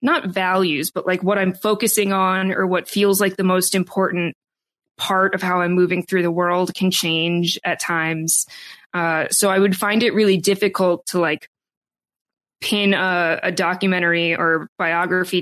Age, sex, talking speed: 20-39, female, 165 wpm